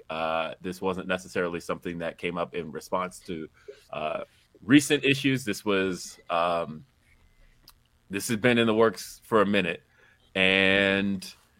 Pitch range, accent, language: 90-110 Hz, American, English